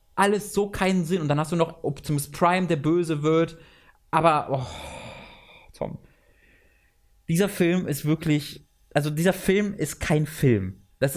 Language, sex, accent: German, male, German